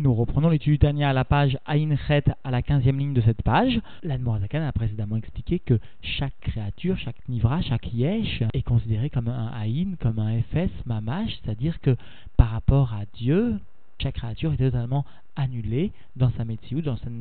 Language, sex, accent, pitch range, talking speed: French, male, French, 115-145 Hz, 190 wpm